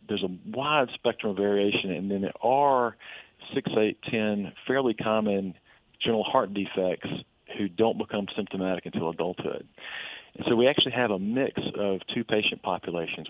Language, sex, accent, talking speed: English, male, American, 160 wpm